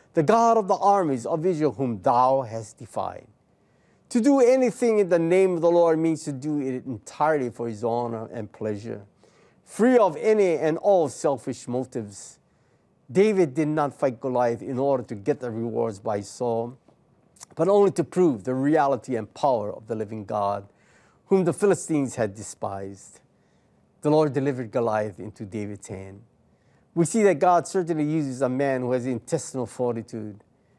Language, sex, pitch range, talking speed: English, male, 115-165 Hz, 170 wpm